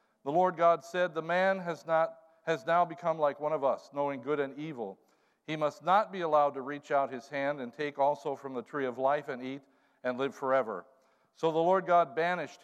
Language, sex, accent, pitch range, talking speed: English, male, American, 130-160 Hz, 220 wpm